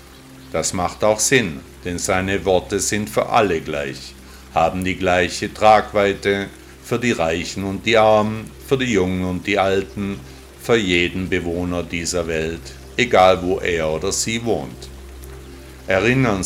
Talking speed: 140 wpm